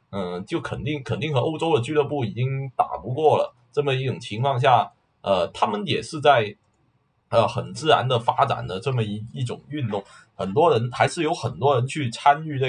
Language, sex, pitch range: Chinese, male, 115-150 Hz